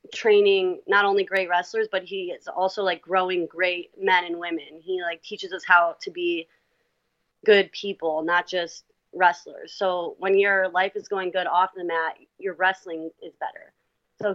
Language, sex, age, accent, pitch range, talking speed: English, female, 30-49, American, 170-200 Hz, 175 wpm